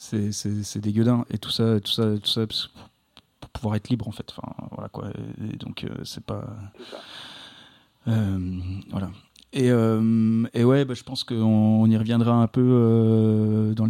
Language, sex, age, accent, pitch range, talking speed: French, male, 30-49, French, 110-125 Hz, 180 wpm